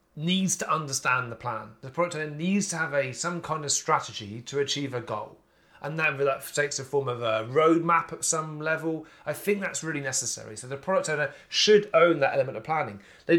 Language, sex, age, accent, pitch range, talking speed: English, male, 30-49, British, 120-165 Hz, 215 wpm